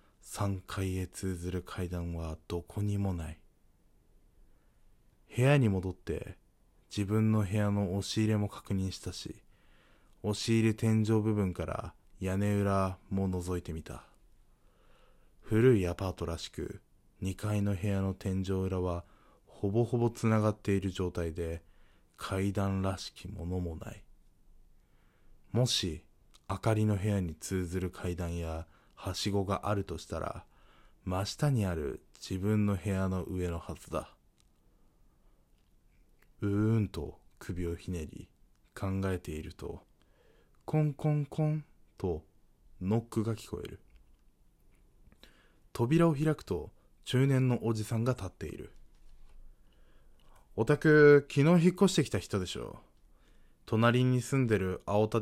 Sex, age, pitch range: male, 20-39, 90-115 Hz